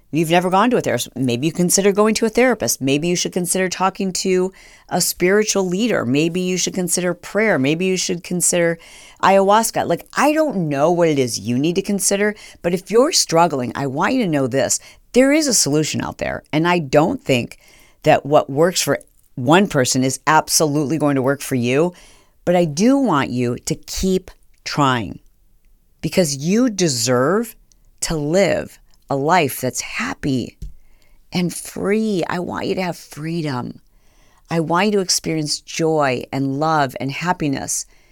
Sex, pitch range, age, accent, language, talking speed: female, 145-195 Hz, 50-69, American, English, 175 wpm